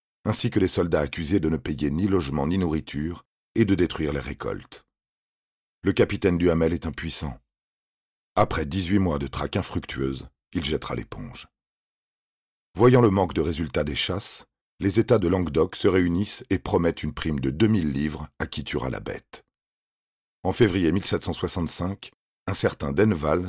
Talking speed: 160 wpm